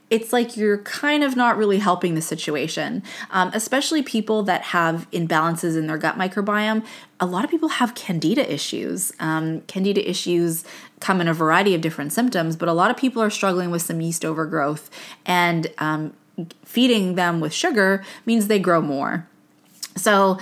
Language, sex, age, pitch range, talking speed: English, female, 20-39, 160-205 Hz, 175 wpm